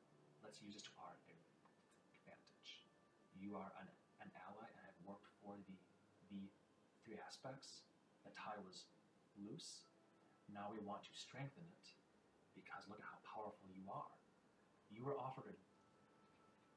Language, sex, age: English, male, 30-49